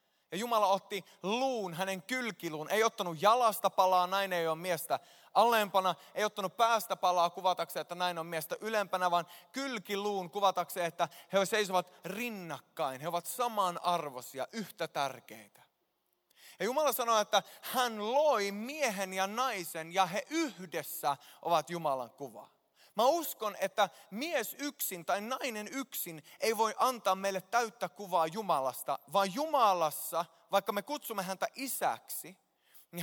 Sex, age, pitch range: male, 20-39, 170-230 Hz